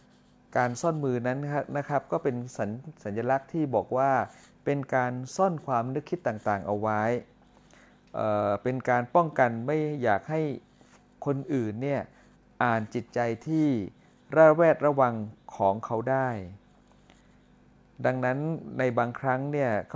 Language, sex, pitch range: Thai, male, 110-140 Hz